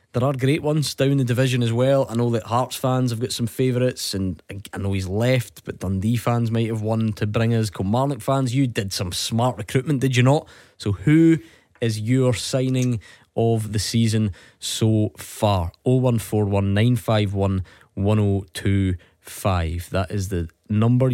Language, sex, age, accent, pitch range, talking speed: English, male, 20-39, British, 100-125 Hz, 160 wpm